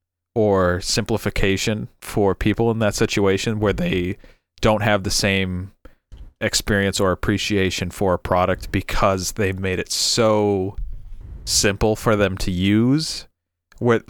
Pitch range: 95-125 Hz